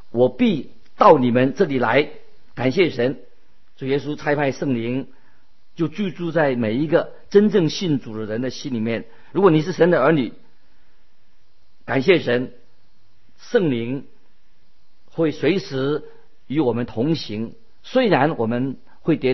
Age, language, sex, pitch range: 50-69, Chinese, male, 125-160 Hz